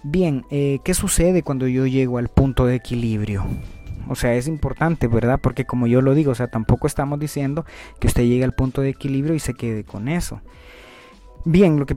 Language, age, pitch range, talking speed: Spanish, 30-49, 115-145 Hz, 205 wpm